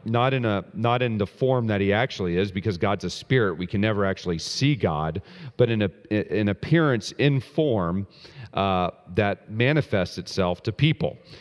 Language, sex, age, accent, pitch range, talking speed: English, male, 40-59, American, 100-125 Hz, 180 wpm